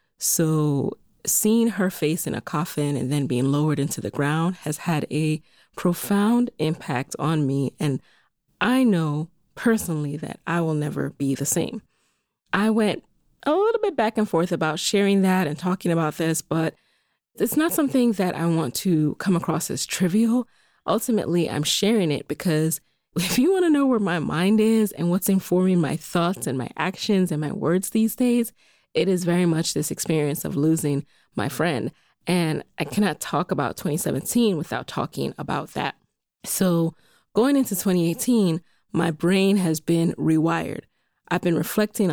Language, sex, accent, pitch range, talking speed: English, female, American, 160-220 Hz, 170 wpm